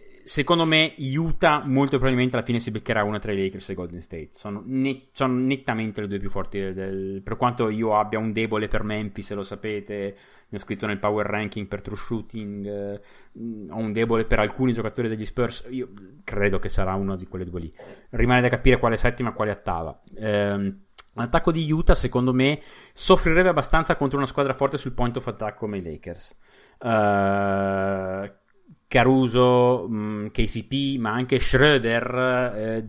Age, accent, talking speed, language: 30-49, native, 180 wpm, Italian